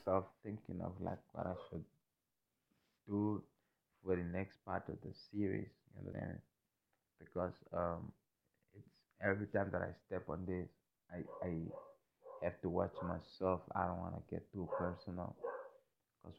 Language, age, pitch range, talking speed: English, 30-49, 85-105 Hz, 145 wpm